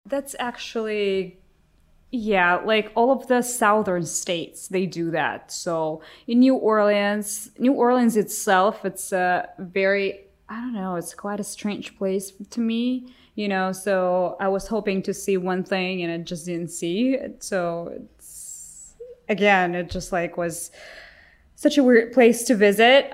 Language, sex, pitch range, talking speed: Russian, female, 180-235 Hz, 155 wpm